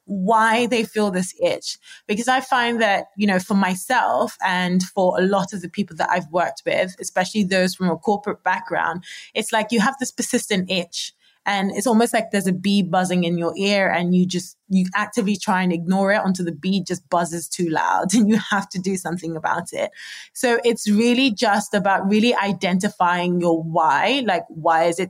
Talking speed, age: 205 wpm, 20-39